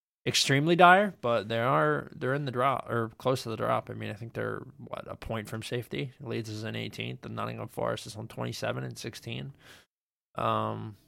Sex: male